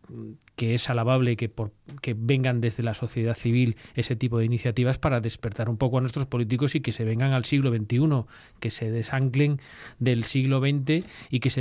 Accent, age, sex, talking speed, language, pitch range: Spanish, 30-49, male, 195 wpm, Spanish, 115-145 Hz